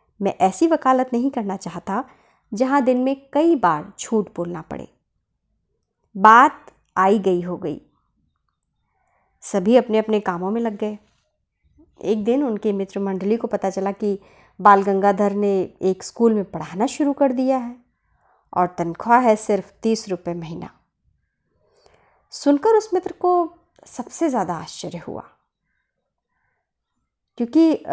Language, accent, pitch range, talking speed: Hindi, native, 195-315 Hz, 135 wpm